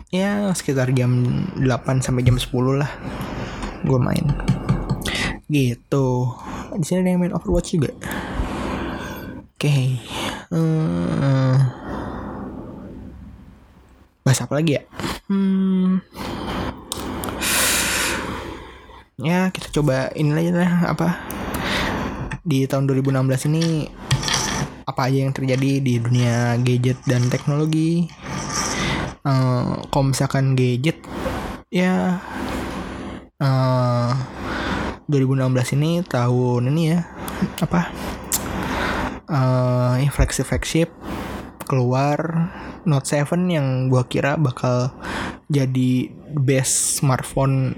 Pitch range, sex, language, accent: 125-155 Hz, male, Indonesian, native